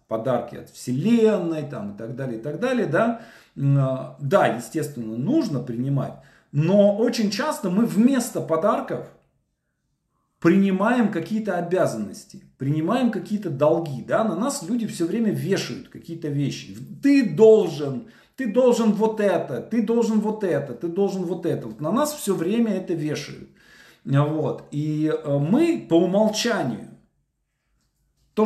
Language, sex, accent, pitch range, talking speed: Russian, male, native, 140-210 Hz, 125 wpm